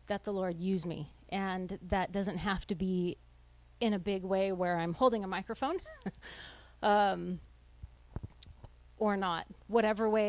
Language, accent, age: English, American, 30-49